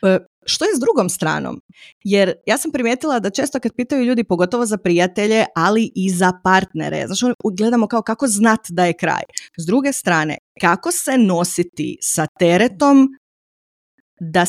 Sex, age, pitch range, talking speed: female, 20-39, 185-240 Hz, 155 wpm